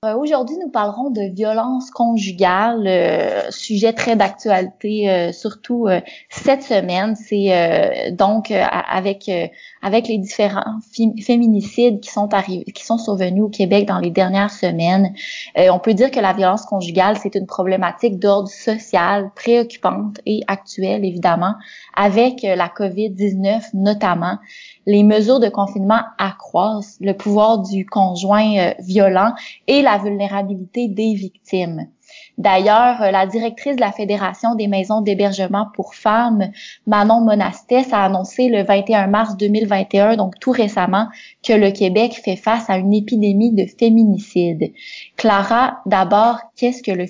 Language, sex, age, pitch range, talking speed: French, female, 20-39, 195-225 Hz, 150 wpm